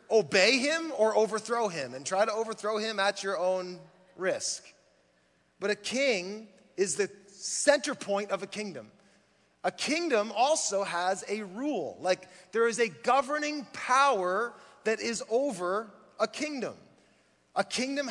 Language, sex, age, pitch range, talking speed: English, male, 30-49, 190-250 Hz, 145 wpm